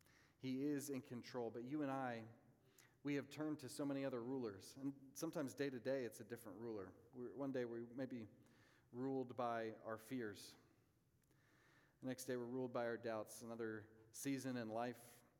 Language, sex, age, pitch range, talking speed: English, male, 40-59, 115-135 Hz, 180 wpm